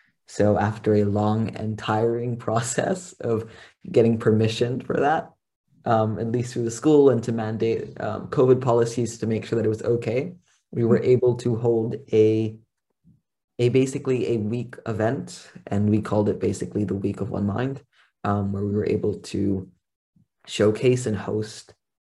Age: 20-39